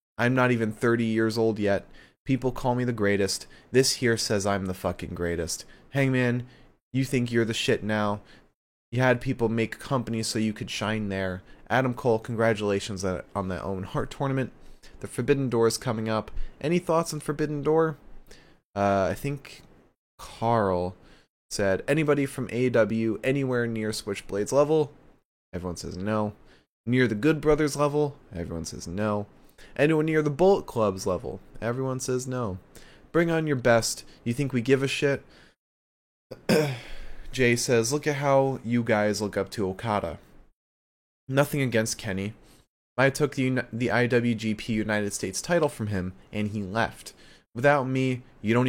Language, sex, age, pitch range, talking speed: English, male, 20-39, 100-130 Hz, 160 wpm